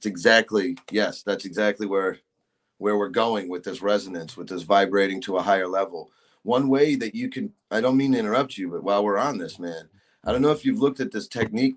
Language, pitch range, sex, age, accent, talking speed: English, 100-135 Hz, male, 30-49, American, 230 wpm